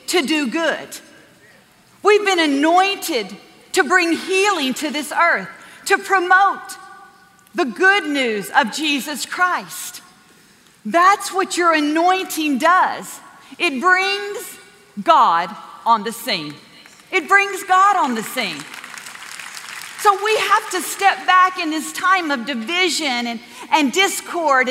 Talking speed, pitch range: 125 wpm, 300-385 Hz